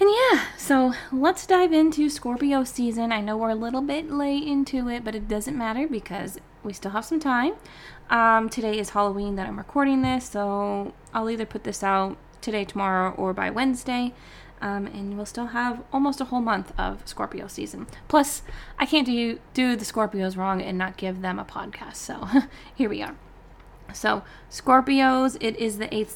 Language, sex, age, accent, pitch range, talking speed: English, female, 20-39, American, 200-265 Hz, 190 wpm